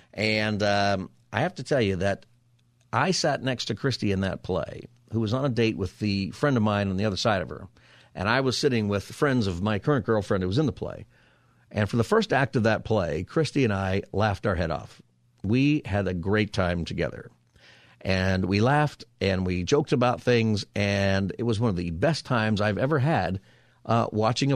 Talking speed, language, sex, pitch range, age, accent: 220 wpm, English, male, 105-130 Hz, 50-69, American